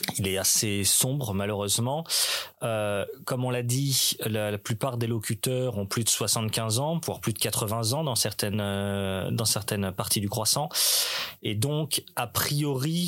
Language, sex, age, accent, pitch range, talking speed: French, male, 30-49, French, 105-130 Hz, 170 wpm